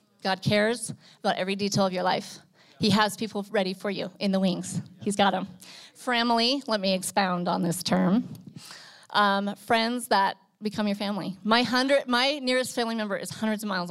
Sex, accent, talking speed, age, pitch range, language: female, American, 185 wpm, 30-49, 195-240 Hz, English